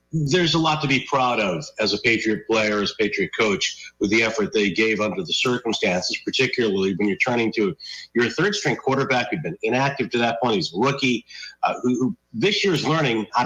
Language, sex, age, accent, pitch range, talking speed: English, male, 40-59, American, 110-135 Hz, 215 wpm